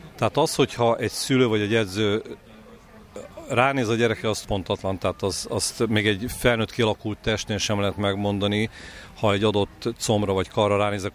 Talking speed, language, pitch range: 160 wpm, Hungarian, 100-115 Hz